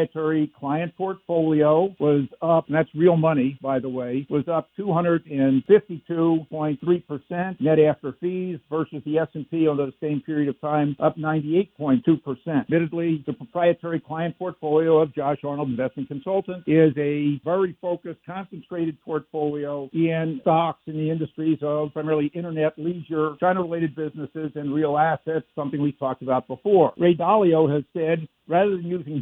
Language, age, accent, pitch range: English, 60-79, American, 150-175 Hz